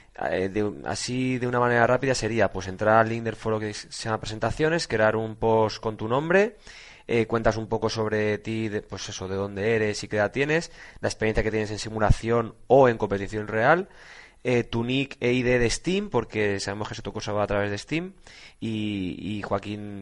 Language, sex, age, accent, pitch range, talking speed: Spanish, male, 20-39, Spanish, 105-125 Hz, 205 wpm